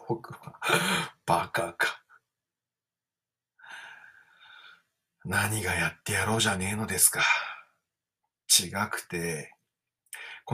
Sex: male